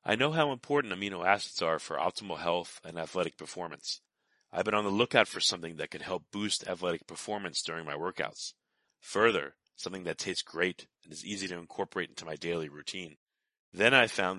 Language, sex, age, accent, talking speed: English, male, 40-59, American, 190 wpm